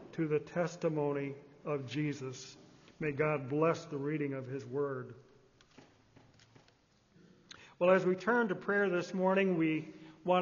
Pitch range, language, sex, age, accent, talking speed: 160-190 Hz, English, male, 50-69, American, 130 wpm